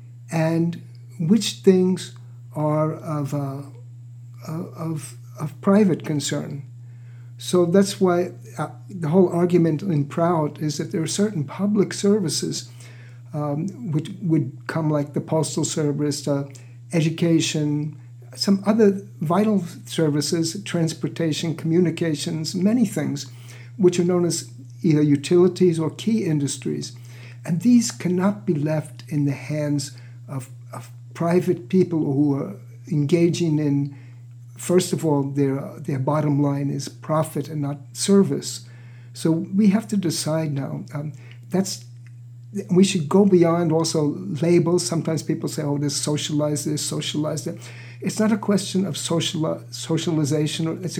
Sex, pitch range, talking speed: male, 125-170 Hz, 130 wpm